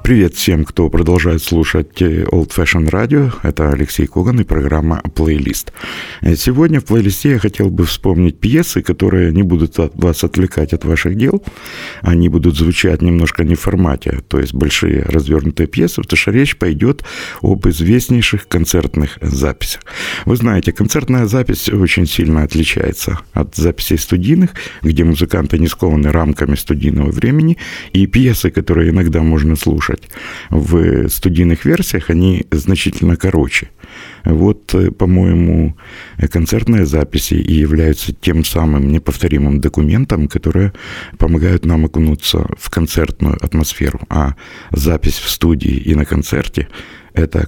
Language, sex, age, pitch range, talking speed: Russian, male, 50-69, 80-95 Hz, 130 wpm